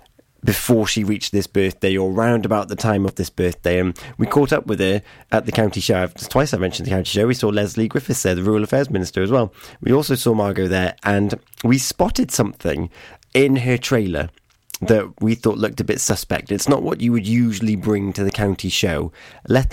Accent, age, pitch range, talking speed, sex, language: British, 20-39, 95-115 Hz, 215 wpm, male, English